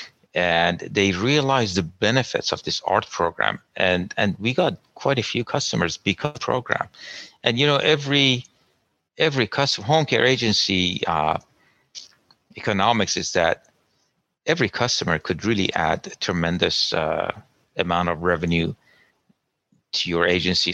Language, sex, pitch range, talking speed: English, male, 90-105 Hz, 135 wpm